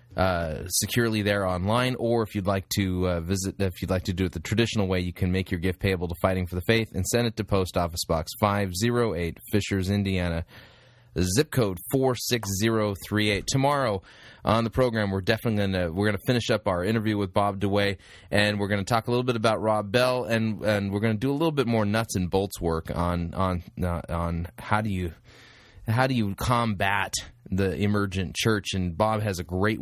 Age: 20-39